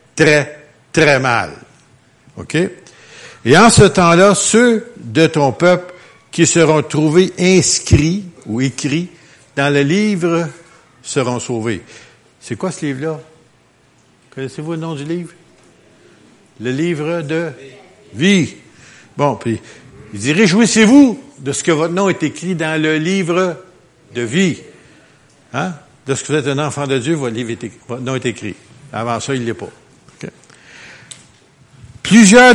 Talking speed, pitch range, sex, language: 140 wpm, 120-175 Hz, male, French